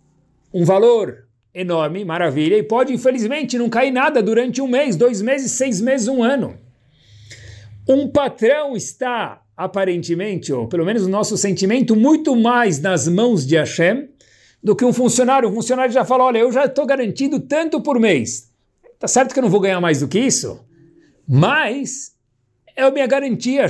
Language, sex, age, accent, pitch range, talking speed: Portuguese, male, 60-79, Brazilian, 160-245 Hz, 170 wpm